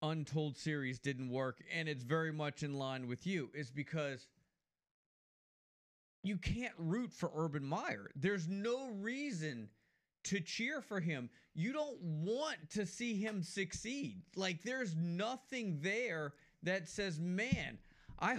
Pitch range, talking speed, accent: 155-220 Hz, 135 wpm, American